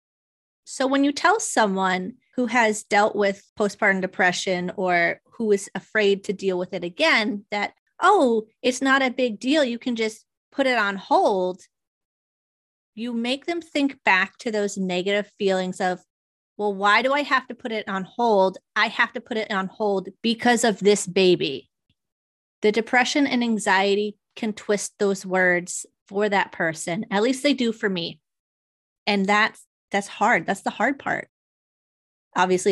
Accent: American